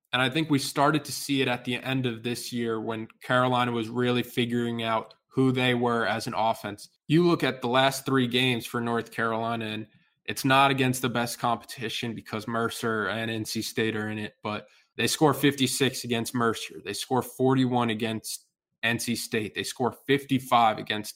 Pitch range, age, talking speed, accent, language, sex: 115-130 Hz, 20-39, 190 wpm, American, English, male